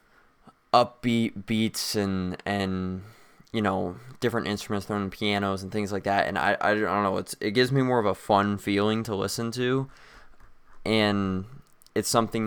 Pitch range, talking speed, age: 95-110 Hz, 165 wpm, 20-39